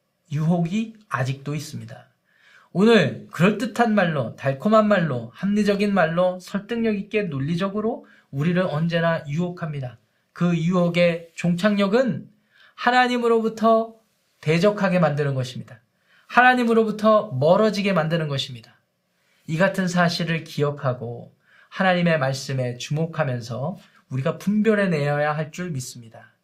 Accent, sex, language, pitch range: native, male, Korean, 145-205 Hz